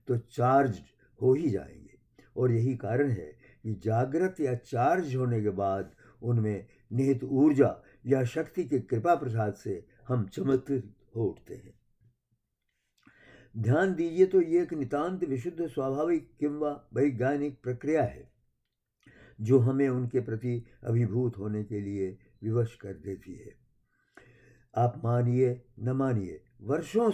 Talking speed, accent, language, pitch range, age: 125 wpm, native, Hindi, 110-140 Hz, 60-79